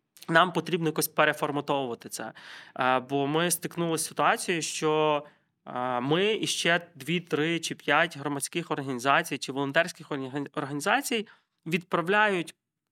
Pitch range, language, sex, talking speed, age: 145-175 Hz, Ukrainian, male, 110 wpm, 20-39